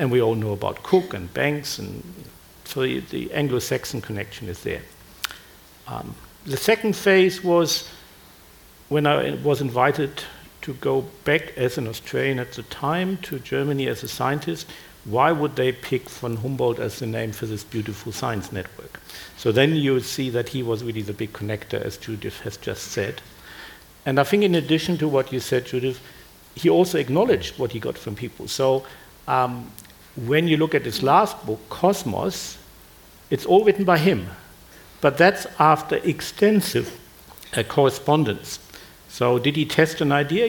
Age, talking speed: 60-79, 170 wpm